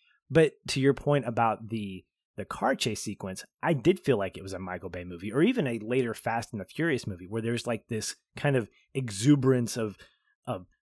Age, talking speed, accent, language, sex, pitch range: 30-49, 210 wpm, American, English, male, 105-135 Hz